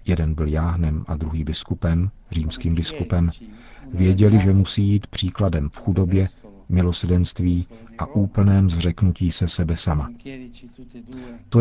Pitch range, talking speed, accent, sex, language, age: 85-100 Hz, 120 wpm, native, male, Czech, 50-69